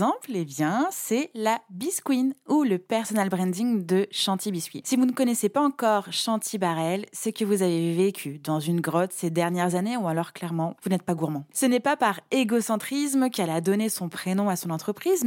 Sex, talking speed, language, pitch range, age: female, 205 wpm, French, 180-235 Hz, 20-39